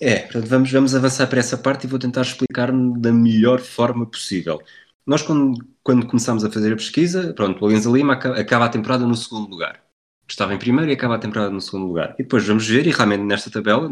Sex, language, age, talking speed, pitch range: male, Portuguese, 20-39, 220 wpm, 100-130 Hz